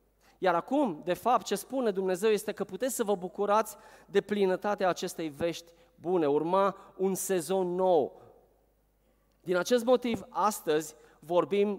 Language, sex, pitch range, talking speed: Romanian, male, 175-220 Hz, 135 wpm